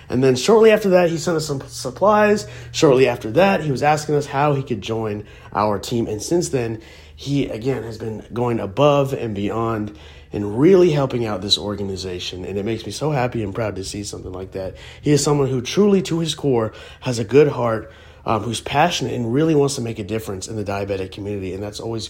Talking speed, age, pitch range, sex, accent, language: 225 wpm, 30-49, 100-145 Hz, male, American, English